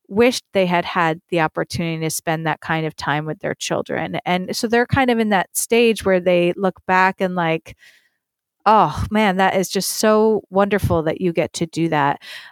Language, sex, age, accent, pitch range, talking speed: English, female, 30-49, American, 175-215 Hz, 200 wpm